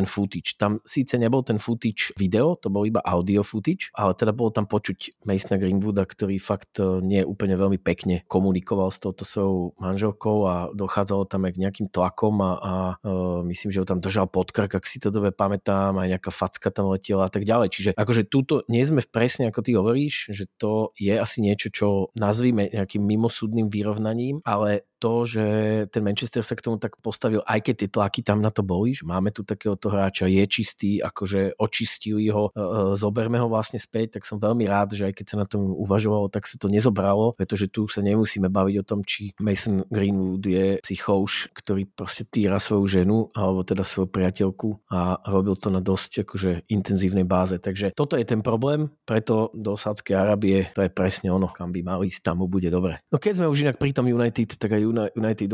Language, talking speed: Slovak, 205 wpm